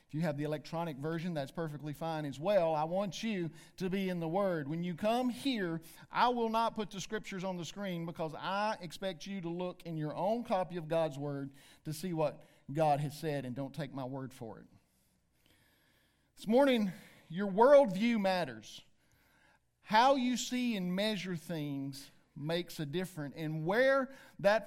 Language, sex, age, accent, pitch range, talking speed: English, male, 50-69, American, 160-220 Hz, 180 wpm